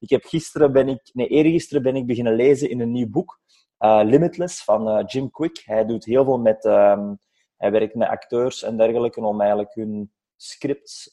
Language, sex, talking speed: English, male, 200 wpm